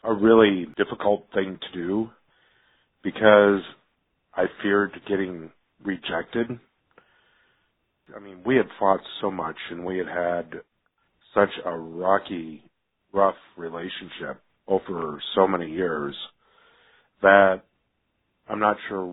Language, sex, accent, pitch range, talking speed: English, male, American, 90-105 Hz, 110 wpm